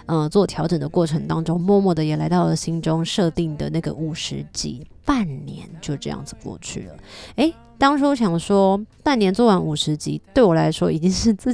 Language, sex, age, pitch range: Chinese, female, 30-49, 160-195 Hz